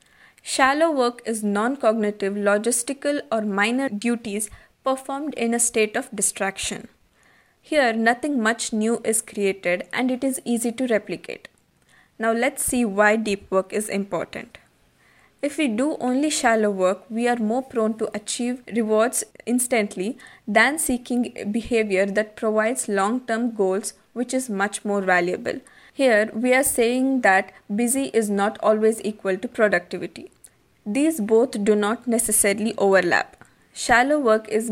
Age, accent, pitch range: 20-39, Indian, 205-250 Hz